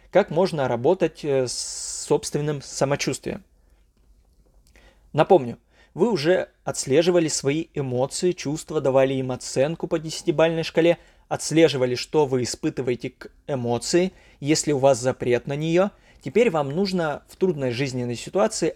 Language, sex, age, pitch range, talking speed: Russian, male, 20-39, 130-175 Hz, 120 wpm